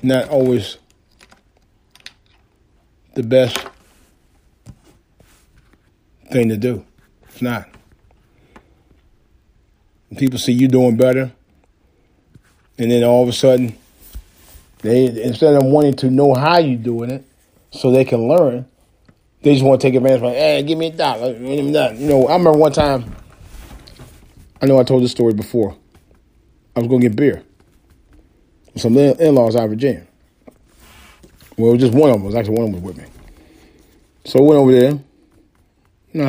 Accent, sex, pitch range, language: American, male, 100-135 Hz, English